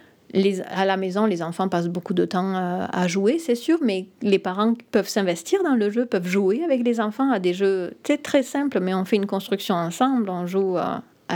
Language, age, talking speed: French, 30-49, 220 wpm